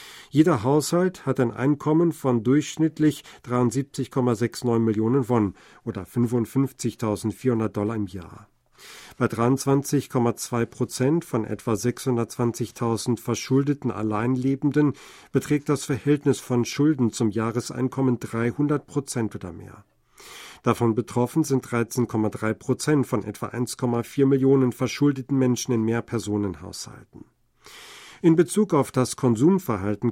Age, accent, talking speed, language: 50-69, German, 105 wpm, German